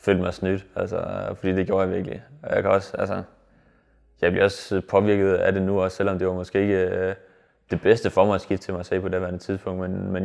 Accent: native